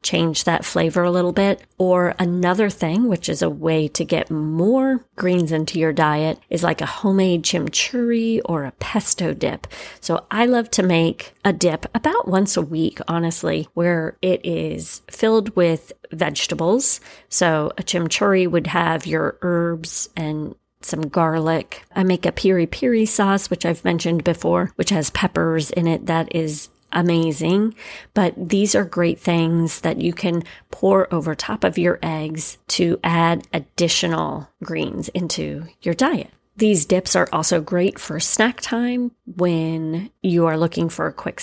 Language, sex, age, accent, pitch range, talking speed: English, female, 30-49, American, 165-190 Hz, 160 wpm